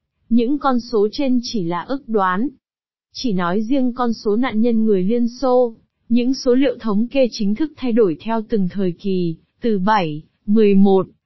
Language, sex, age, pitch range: Vietnamese, female, 20-39, 200-255 Hz